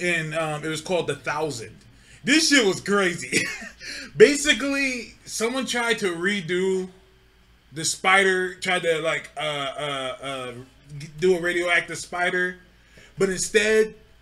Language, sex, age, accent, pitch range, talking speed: English, male, 20-39, American, 170-250 Hz, 125 wpm